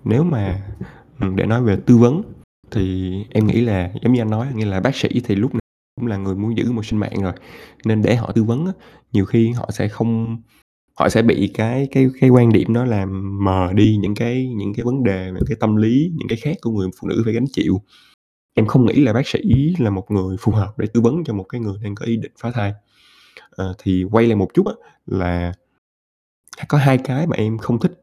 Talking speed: 240 wpm